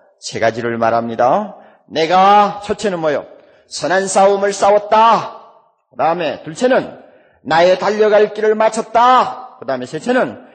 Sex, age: male, 40-59